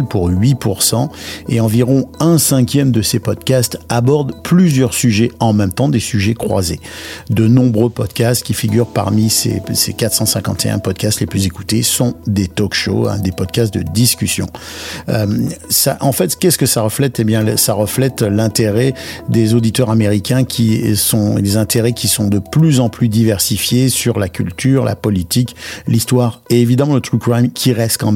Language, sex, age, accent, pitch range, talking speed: French, male, 50-69, French, 105-125 Hz, 175 wpm